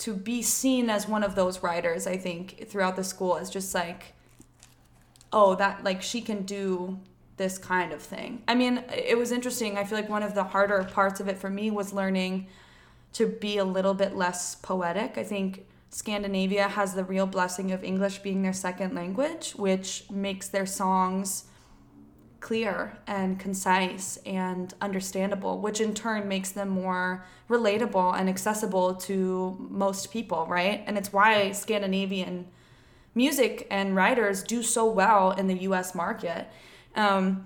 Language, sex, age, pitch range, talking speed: English, female, 20-39, 190-215 Hz, 165 wpm